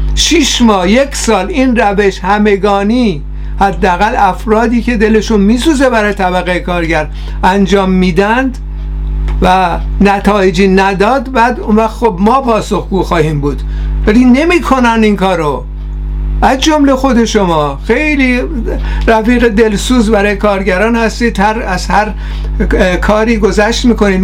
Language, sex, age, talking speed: Persian, male, 60-79, 115 wpm